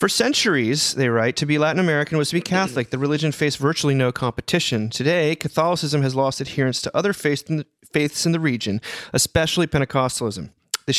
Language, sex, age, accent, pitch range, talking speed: English, male, 30-49, American, 125-165 Hz, 180 wpm